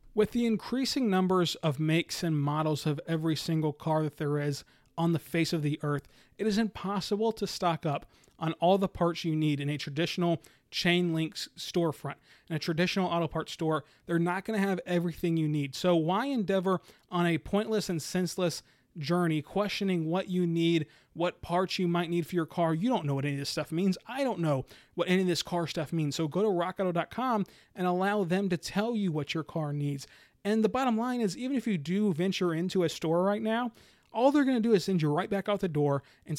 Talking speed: 225 wpm